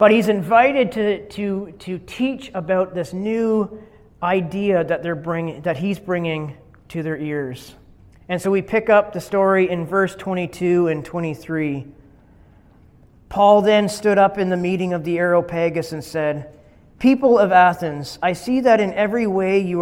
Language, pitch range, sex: English, 155-195 Hz, male